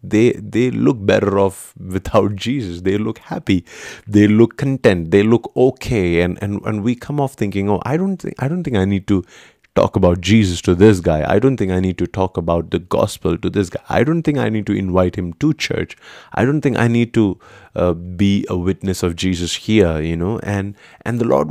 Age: 30-49